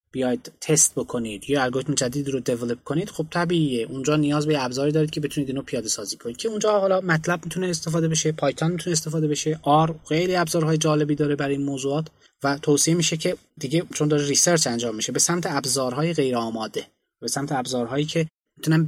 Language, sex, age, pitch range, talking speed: Persian, male, 20-39, 135-170 Hz, 195 wpm